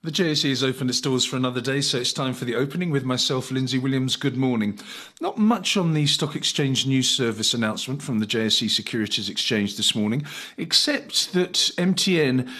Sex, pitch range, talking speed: male, 120-155 Hz, 190 wpm